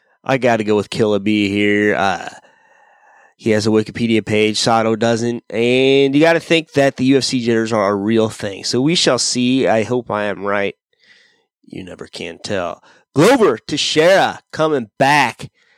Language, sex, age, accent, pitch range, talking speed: English, male, 30-49, American, 115-140 Hz, 175 wpm